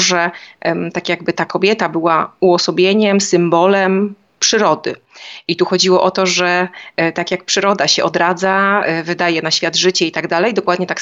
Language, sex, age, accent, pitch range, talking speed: Polish, female, 30-49, native, 165-185 Hz, 160 wpm